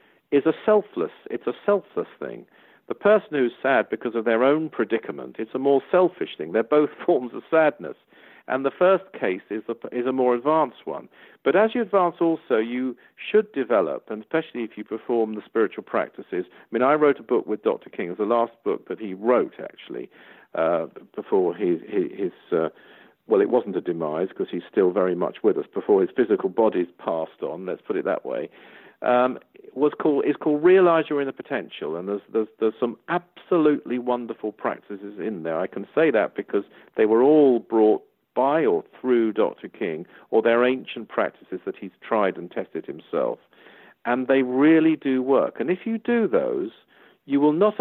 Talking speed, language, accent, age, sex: 195 wpm, English, British, 50-69, male